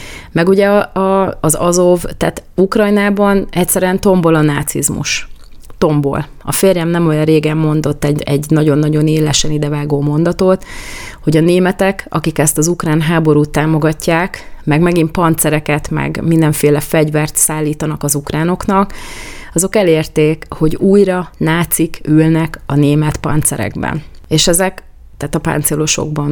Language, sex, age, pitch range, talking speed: Hungarian, female, 30-49, 150-175 Hz, 130 wpm